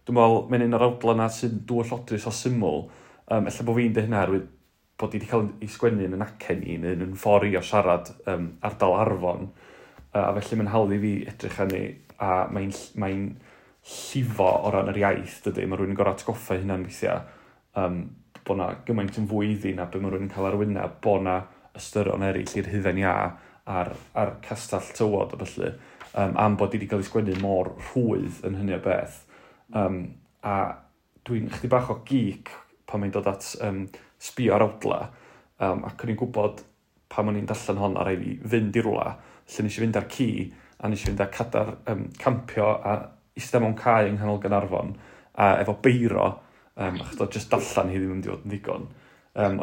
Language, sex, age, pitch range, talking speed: English, male, 30-49, 95-110 Hz, 190 wpm